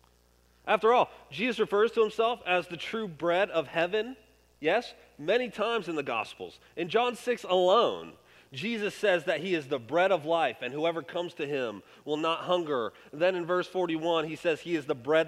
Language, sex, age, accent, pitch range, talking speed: English, male, 30-49, American, 155-220 Hz, 195 wpm